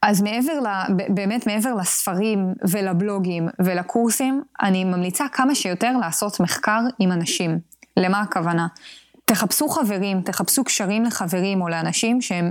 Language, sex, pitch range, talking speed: English, female, 180-230 Hz, 125 wpm